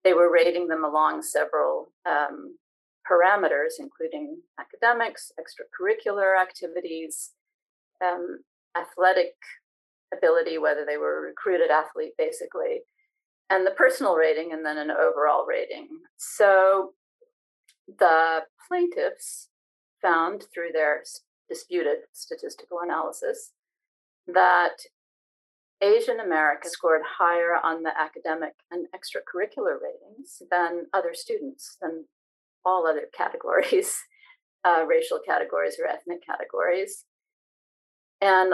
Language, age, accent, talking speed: English, 40-59, American, 100 wpm